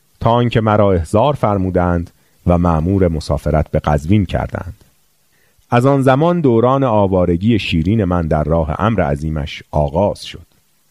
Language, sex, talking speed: Persian, male, 125 wpm